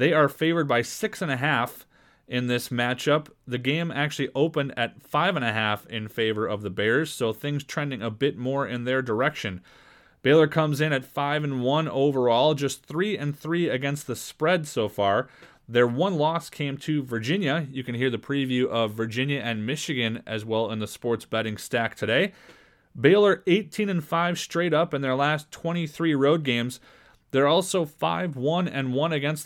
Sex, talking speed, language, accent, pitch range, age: male, 165 wpm, English, American, 130-160 Hz, 30-49